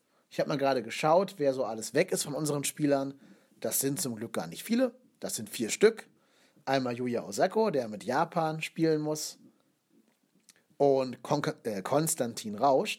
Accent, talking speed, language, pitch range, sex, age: German, 165 wpm, German, 125-175 Hz, male, 40-59